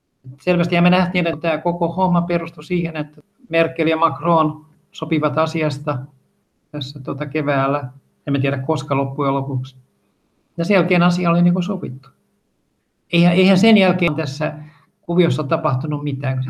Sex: male